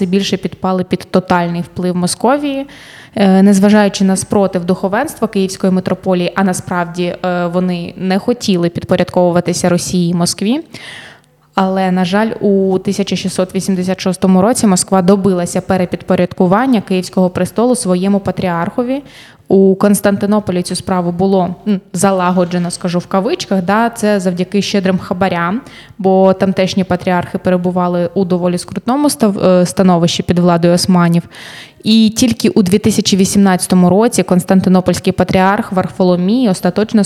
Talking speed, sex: 110 wpm, female